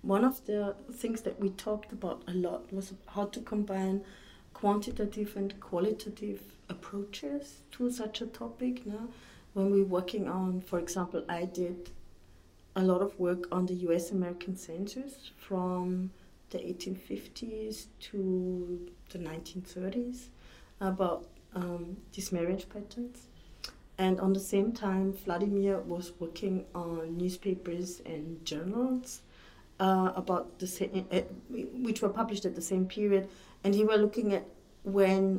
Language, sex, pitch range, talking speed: English, female, 180-210 Hz, 135 wpm